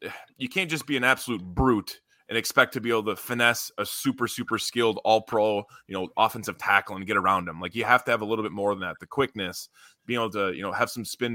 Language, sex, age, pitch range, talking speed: English, male, 20-39, 105-140 Hz, 260 wpm